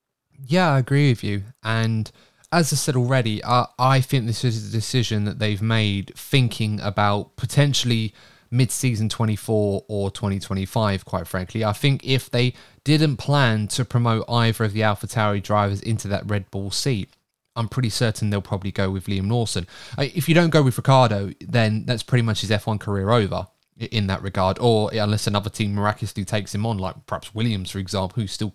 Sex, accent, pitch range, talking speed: male, British, 105-125 Hz, 185 wpm